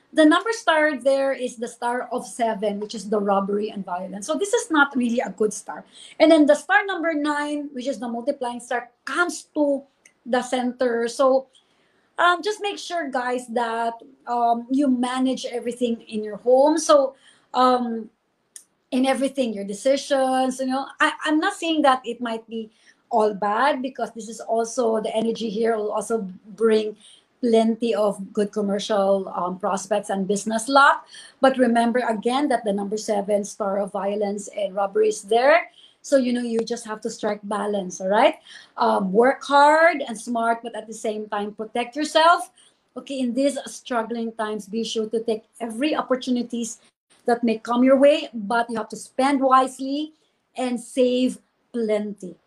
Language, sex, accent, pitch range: English, female, Filipino, 220-275 Hz